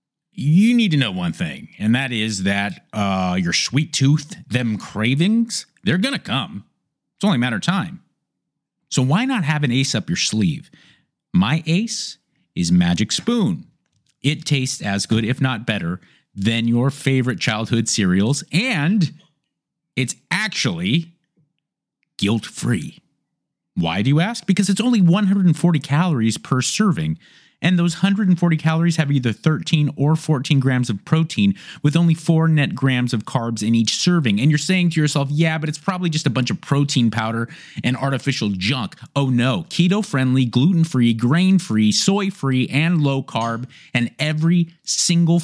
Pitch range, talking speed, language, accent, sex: 120-170 Hz, 155 wpm, English, American, male